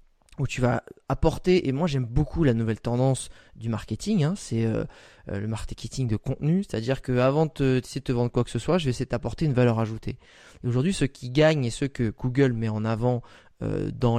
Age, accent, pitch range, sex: 20-39, French, 120-150 Hz, male